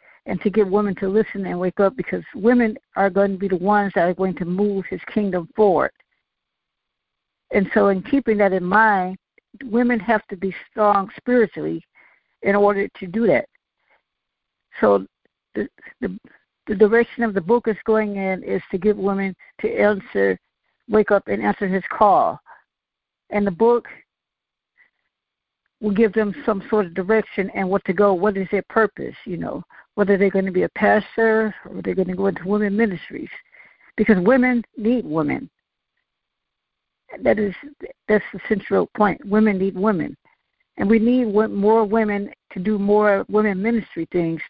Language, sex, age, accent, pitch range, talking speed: English, female, 60-79, American, 195-220 Hz, 165 wpm